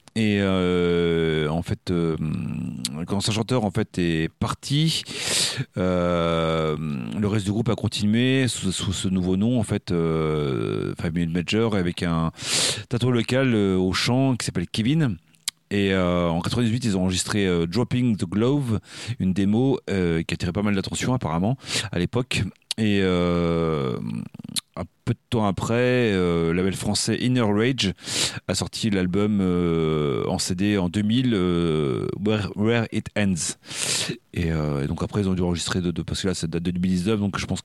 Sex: male